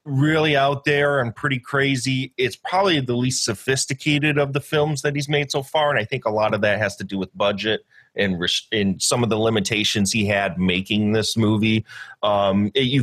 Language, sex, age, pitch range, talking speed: English, male, 30-49, 105-145 Hz, 205 wpm